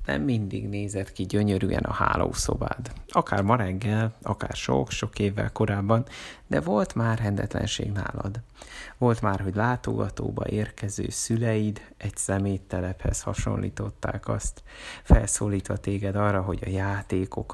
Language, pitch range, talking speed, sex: Hungarian, 95-115 Hz, 120 wpm, male